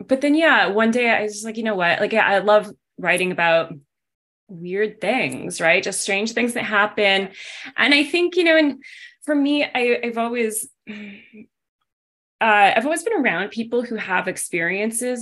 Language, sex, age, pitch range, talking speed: English, female, 20-39, 170-225 Hz, 180 wpm